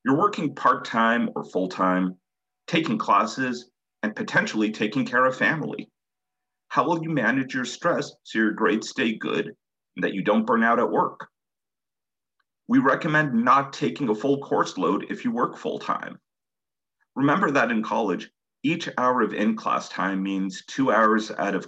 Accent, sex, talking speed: American, male, 160 wpm